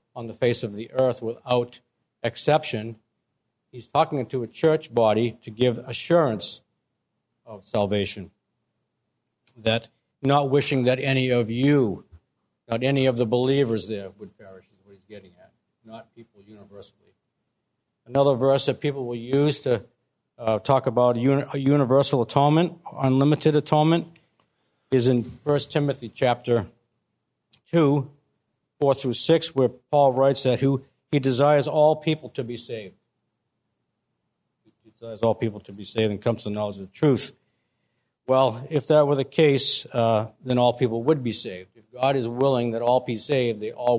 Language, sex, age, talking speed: English, male, 60-79, 155 wpm